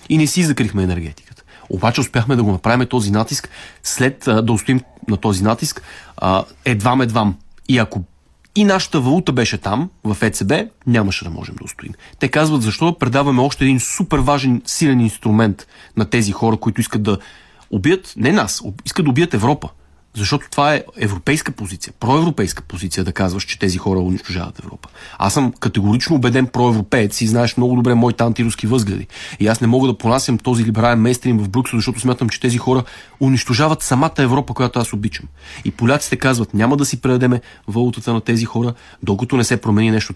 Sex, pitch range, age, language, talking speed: male, 100-130 Hz, 30-49, Bulgarian, 180 wpm